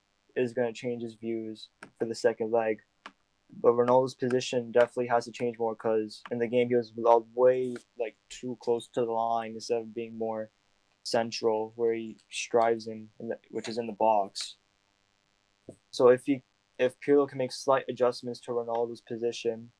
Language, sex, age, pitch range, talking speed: English, male, 20-39, 110-120 Hz, 175 wpm